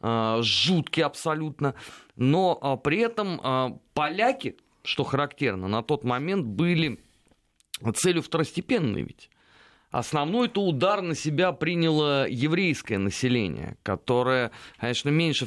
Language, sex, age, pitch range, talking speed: Russian, male, 30-49, 115-160 Hz, 100 wpm